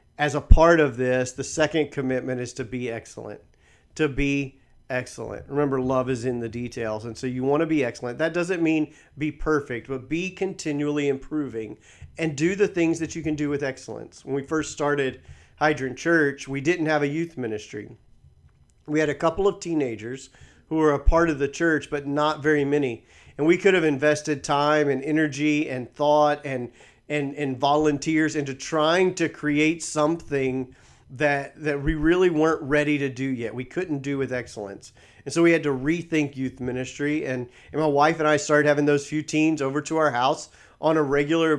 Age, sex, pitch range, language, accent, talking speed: 40-59, male, 130-155 Hz, English, American, 195 wpm